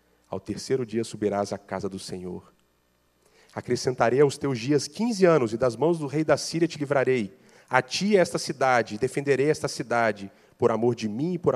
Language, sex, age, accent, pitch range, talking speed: Portuguese, male, 40-59, Brazilian, 95-155 Hz, 185 wpm